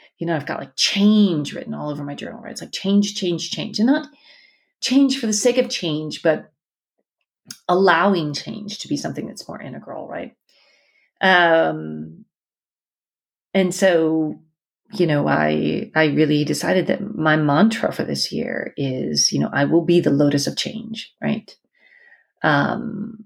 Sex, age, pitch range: female, 30-49, 150-200 Hz